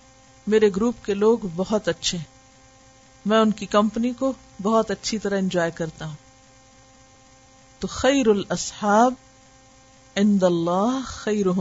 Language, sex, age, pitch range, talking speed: Urdu, female, 50-69, 130-215 Hz, 100 wpm